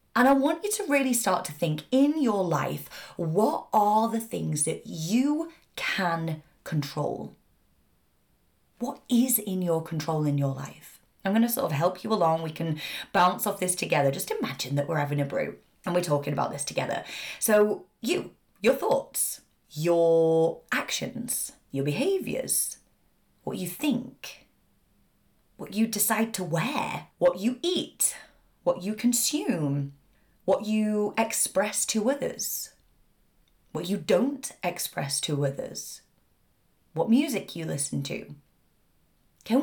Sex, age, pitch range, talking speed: female, 30-49, 160-240 Hz, 140 wpm